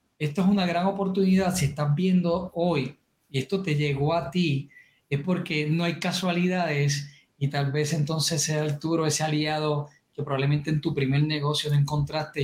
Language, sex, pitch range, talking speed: Spanish, male, 145-185 Hz, 175 wpm